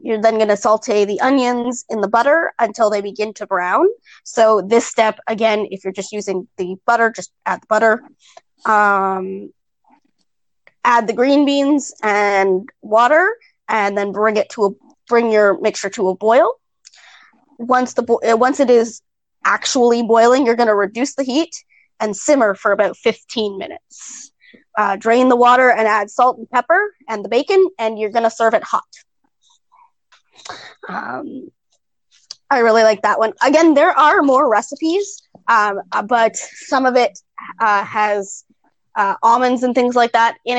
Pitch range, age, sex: 205-250 Hz, 20-39, female